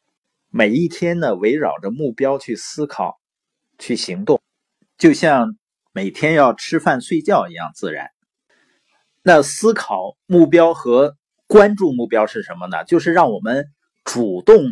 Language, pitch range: Chinese, 135-225 Hz